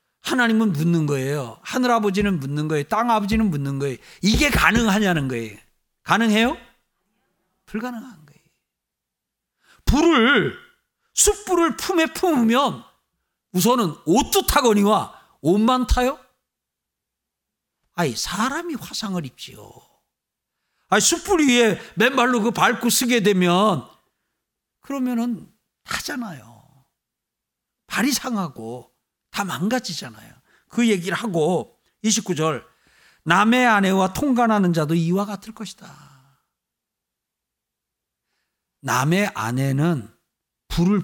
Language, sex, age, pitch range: Korean, male, 50-69, 170-245 Hz